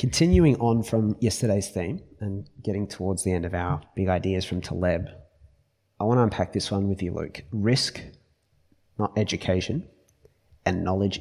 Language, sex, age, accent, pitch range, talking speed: English, male, 20-39, Australian, 90-110 Hz, 160 wpm